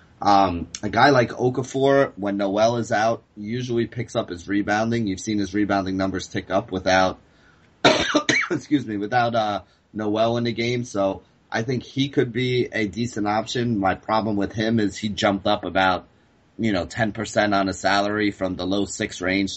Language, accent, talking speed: English, American, 180 wpm